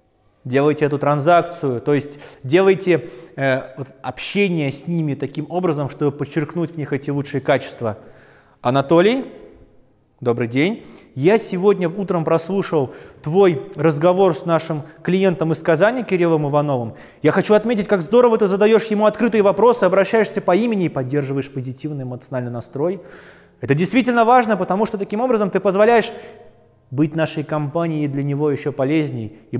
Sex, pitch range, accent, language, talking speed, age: male, 140-195 Hz, native, Russian, 140 wpm, 20-39